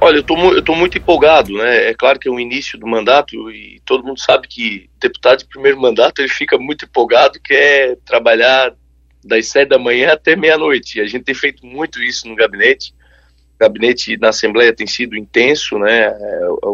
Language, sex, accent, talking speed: Portuguese, male, Brazilian, 195 wpm